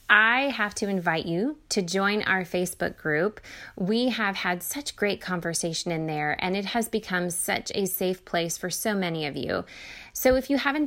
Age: 20-39